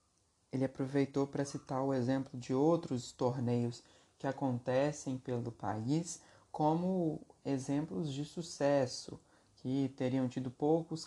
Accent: Brazilian